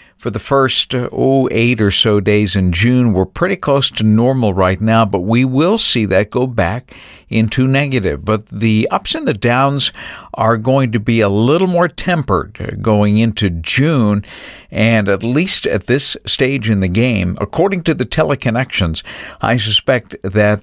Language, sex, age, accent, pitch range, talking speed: English, male, 50-69, American, 100-125 Hz, 170 wpm